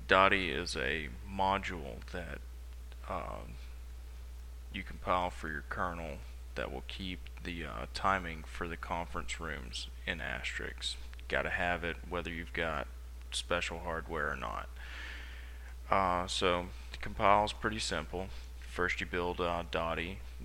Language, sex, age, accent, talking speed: English, male, 20-39, American, 130 wpm